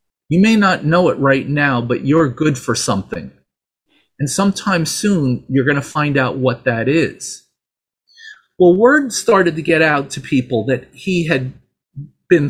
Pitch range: 130-180 Hz